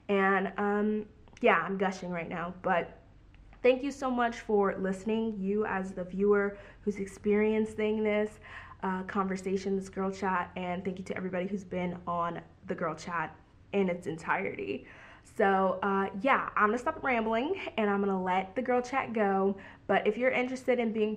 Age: 20-39